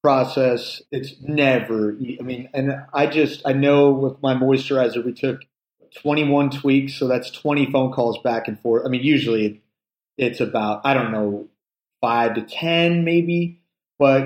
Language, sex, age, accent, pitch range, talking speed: English, male, 30-49, American, 130-155 Hz, 165 wpm